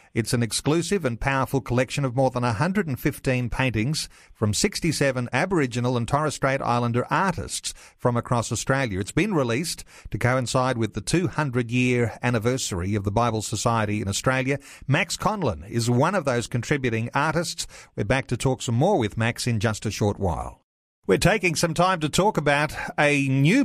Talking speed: 170 wpm